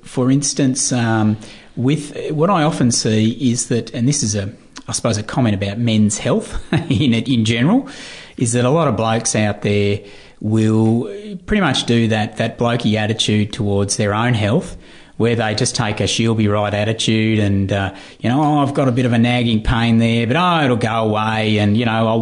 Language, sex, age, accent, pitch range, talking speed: English, male, 30-49, Australian, 110-130 Hz, 210 wpm